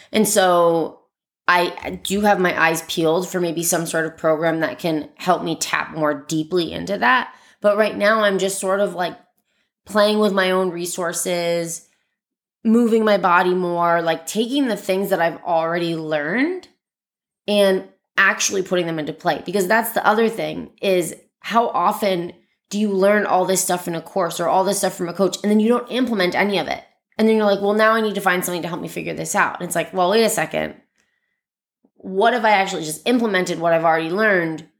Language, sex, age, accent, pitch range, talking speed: English, female, 20-39, American, 170-205 Hz, 205 wpm